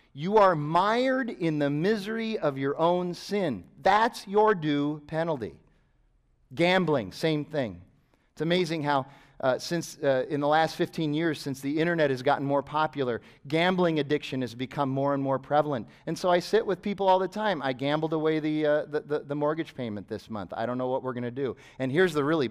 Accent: American